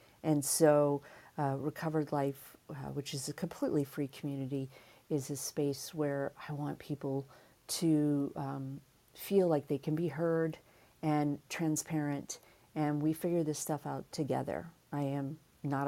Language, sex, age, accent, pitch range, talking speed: English, female, 40-59, American, 145-170 Hz, 145 wpm